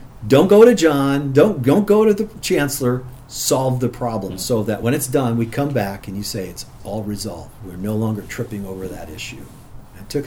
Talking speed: 215 wpm